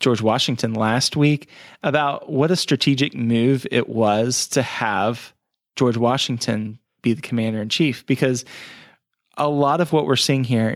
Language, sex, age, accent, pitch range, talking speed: English, male, 30-49, American, 115-135 Hz, 155 wpm